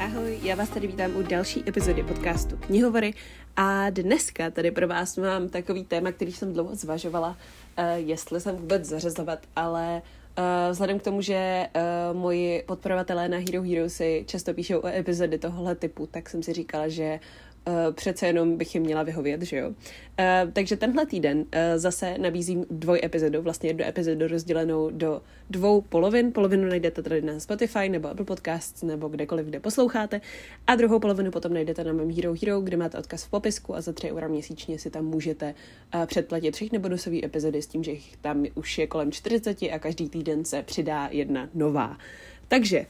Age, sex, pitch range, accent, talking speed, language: 20-39, female, 165-200 Hz, native, 180 wpm, Czech